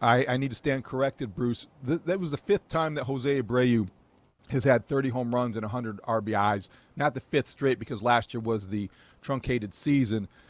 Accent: American